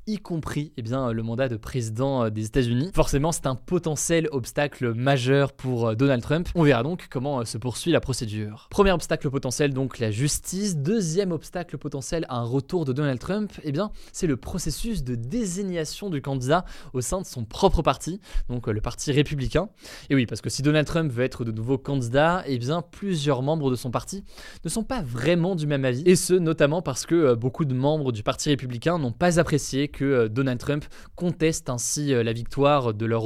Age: 20-39